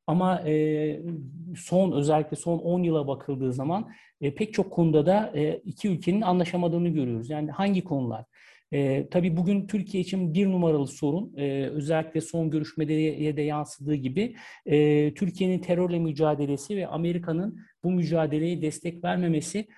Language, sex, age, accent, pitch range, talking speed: Turkish, male, 50-69, native, 145-175 Hz, 125 wpm